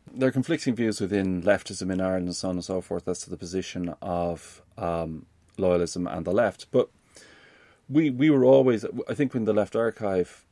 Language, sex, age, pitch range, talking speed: English, male, 30-49, 90-110 Hz, 200 wpm